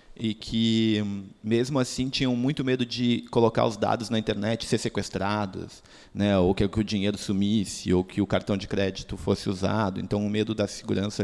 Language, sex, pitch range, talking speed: Portuguese, male, 100-115 Hz, 190 wpm